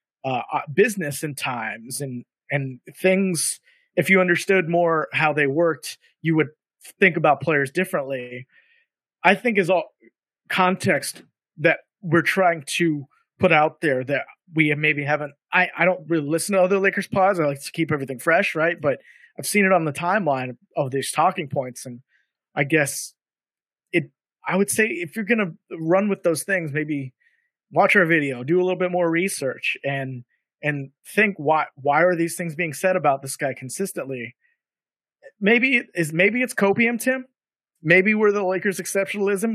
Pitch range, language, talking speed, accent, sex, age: 150-200 Hz, English, 175 wpm, American, male, 30-49